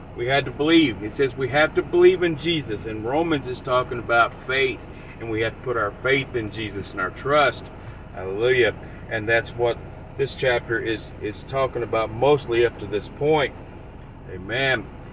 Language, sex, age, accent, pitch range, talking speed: English, male, 40-59, American, 120-155 Hz, 185 wpm